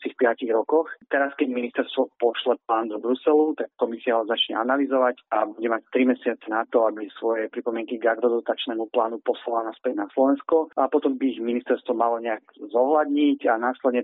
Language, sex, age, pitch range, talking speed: Slovak, male, 30-49, 110-125 Hz, 175 wpm